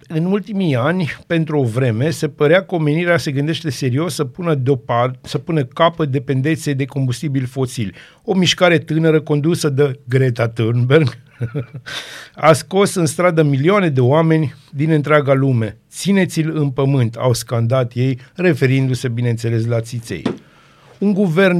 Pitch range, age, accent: 130-160 Hz, 50-69, native